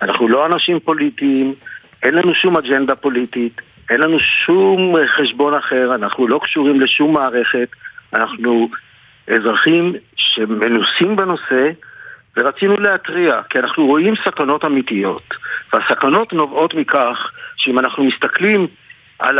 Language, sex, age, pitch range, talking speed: Hebrew, male, 50-69, 135-190 Hz, 115 wpm